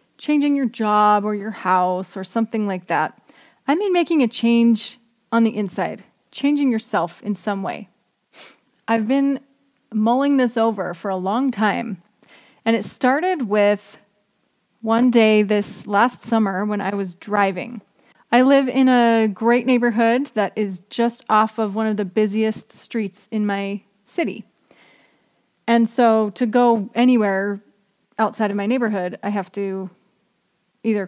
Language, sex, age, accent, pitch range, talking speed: English, female, 30-49, American, 205-240 Hz, 150 wpm